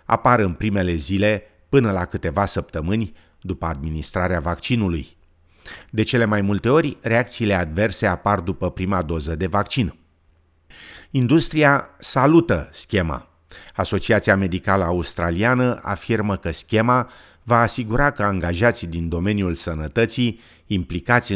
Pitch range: 85-115 Hz